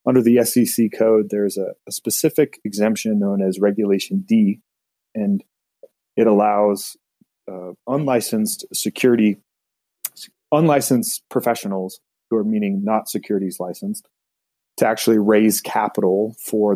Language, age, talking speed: English, 30-49, 120 wpm